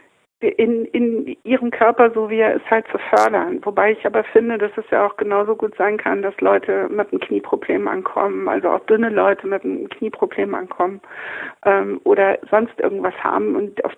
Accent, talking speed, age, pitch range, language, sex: German, 190 wpm, 60-79, 195-255 Hz, German, female